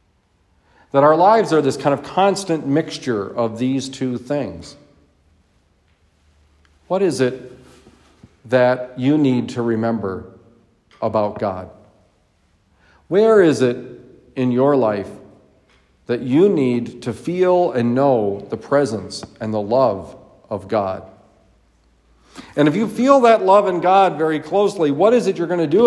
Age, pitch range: 50-69, 115-195 Hz